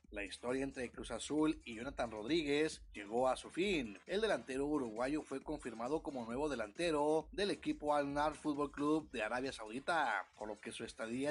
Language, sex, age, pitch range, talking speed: Spanish, male, 30-49, 125-160 Hz, 175 wpm